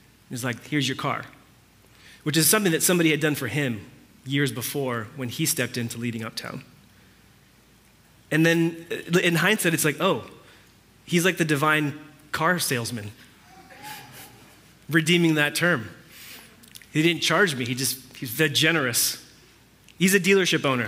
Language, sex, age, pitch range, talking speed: English, male, 30-49, 130-170 Hz, 145 wpm